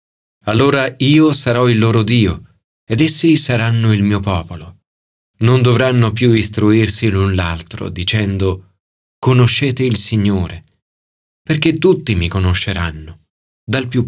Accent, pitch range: native, 95-145 Hz